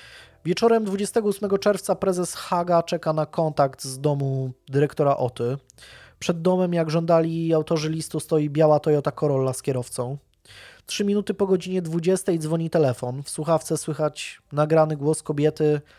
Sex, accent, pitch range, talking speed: male, native, 140-170 Hz, 140 wpm